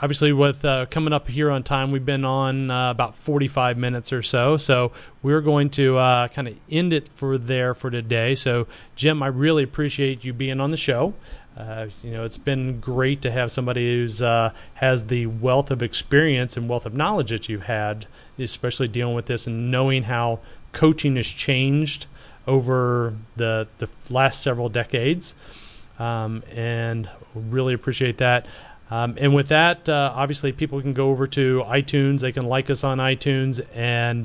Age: 30-49